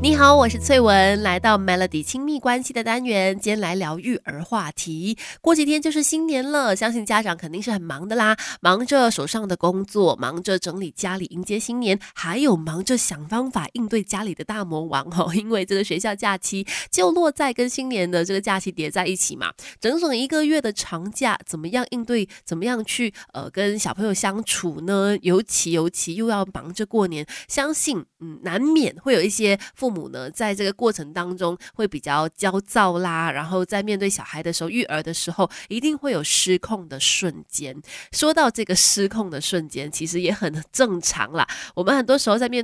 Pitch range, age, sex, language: 175-225 Hz, 20-39, female, Chinese